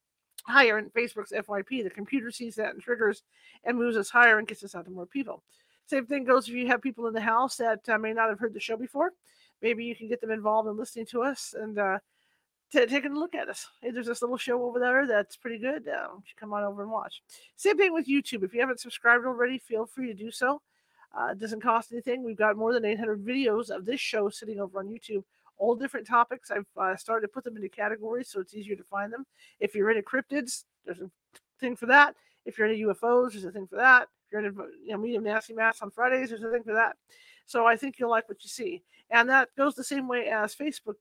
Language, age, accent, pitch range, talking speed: English, 50-69, American, 215-255 Hz, 250 wpm